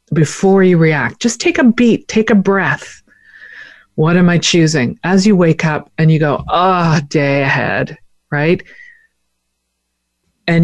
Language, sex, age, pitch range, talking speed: English, female, 50-69, 145-195 Hz, 145 wpm